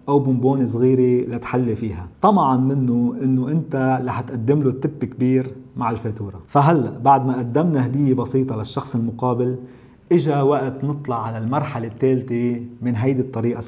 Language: Arabic